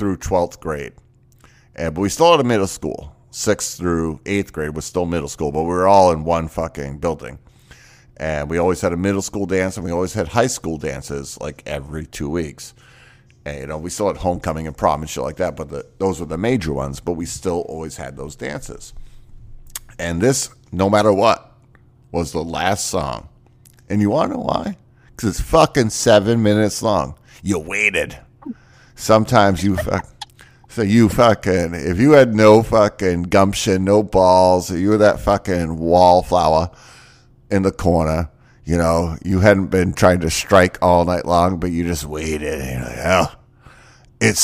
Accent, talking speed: American, 185 wpm